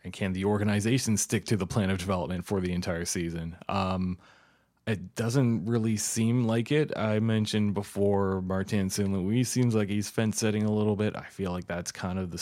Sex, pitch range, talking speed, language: male, 90-105 Hz, 195 wpm, English